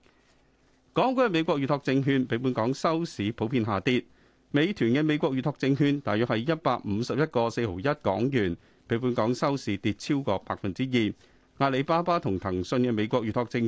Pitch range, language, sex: 110-150 Hz, Chinese, male